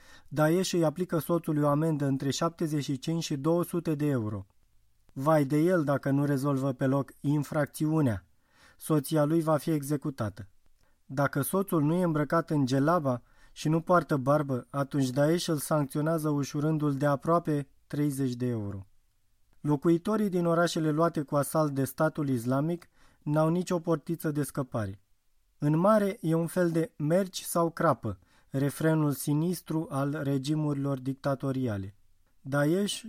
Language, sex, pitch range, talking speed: Romanian, male, 135-165 Hz, 140 wpm